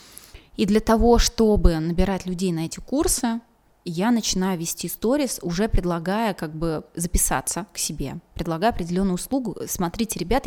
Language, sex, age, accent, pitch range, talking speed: Russian, female, 20-39, native, 175-215 Hz, 145 wpm